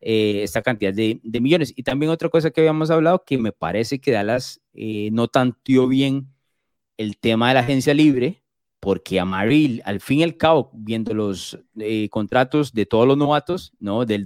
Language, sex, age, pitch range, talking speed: Spanish, male, 30-49, 105-145 Hz, 190 wpm